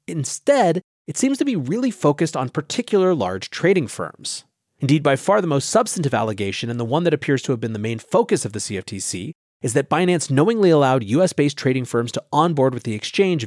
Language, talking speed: English, 205 wpm